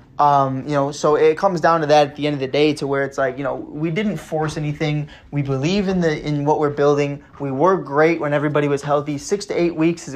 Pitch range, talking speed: 145-170 Hz, 265 wpm